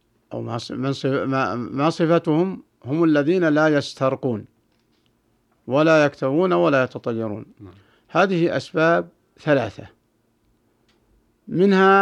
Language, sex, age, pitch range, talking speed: Arabic, male, 60-79, 120-160 Hz, 75 wpm